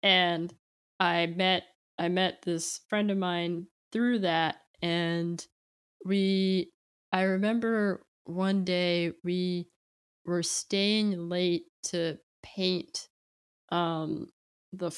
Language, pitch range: English, 160-185 Hz